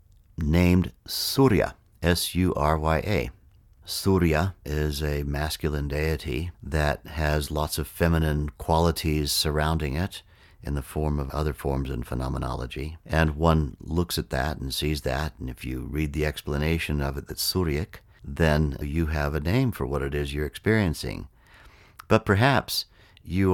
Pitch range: 75-85 Hz